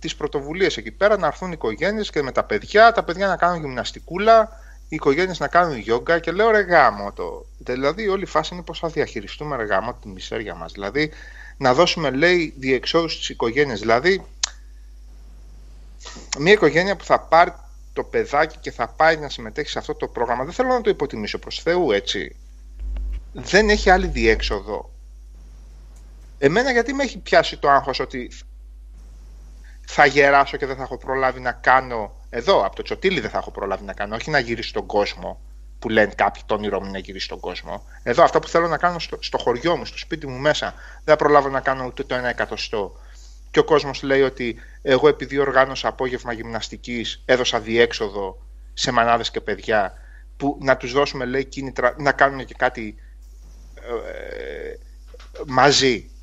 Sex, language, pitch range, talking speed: male, Greek, 110-170 Hz, 180 wpm